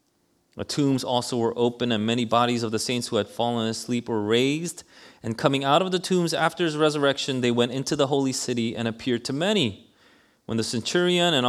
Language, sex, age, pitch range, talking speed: English, male, 30-49, 105-150 Hz, 210 wpm